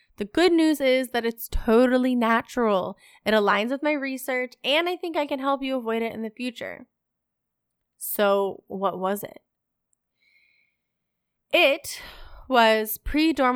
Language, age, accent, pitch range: English, 20-39, American, 210-275 Hz